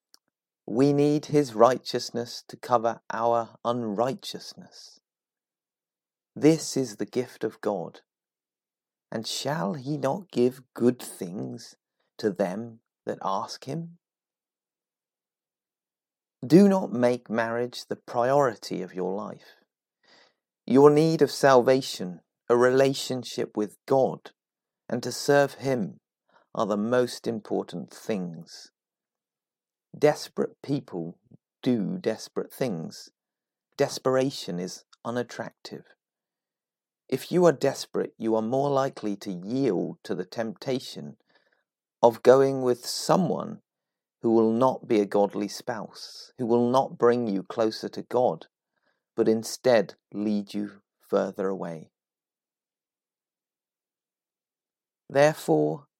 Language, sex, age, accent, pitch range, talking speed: English, male, 30-49, British, 110-135 Hz, 105 wpm